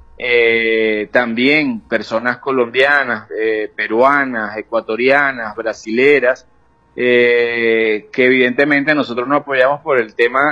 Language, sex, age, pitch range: Spanish, male, 30-49, 120-150 Hz